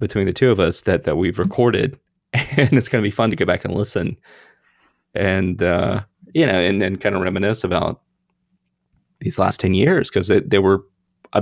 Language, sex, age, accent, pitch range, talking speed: English, male, 30-49, American, 95-125 Hz, 205 wpm